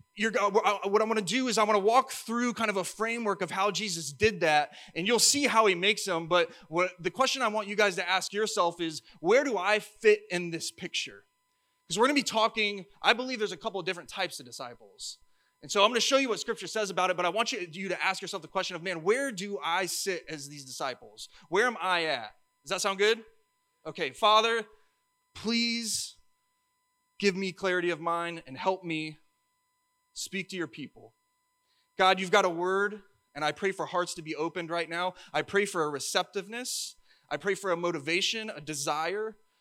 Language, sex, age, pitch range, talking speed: English, male, 20-39, 175-230 Hz, 220 wpm